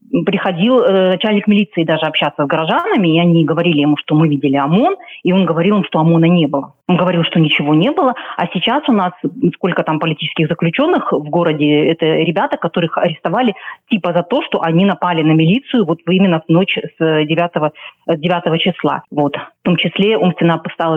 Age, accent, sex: 30-49, native, female